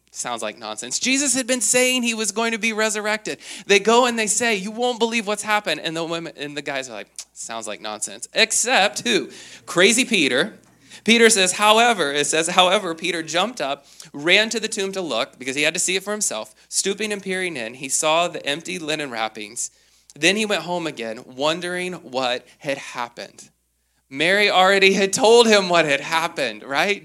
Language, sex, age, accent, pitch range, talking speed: English, male, 20-39, American, 140-195 Hz, 195 wpm